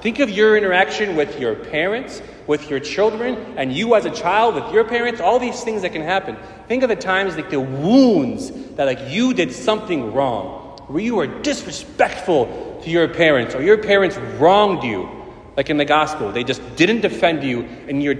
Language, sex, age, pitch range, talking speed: English, male, 30-49, 135-215 Hz, 200 wpm